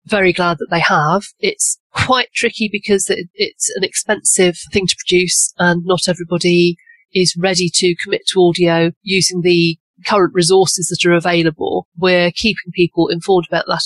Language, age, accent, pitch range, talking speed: English, 40-59, British, 170-205 Hz, 165 wpm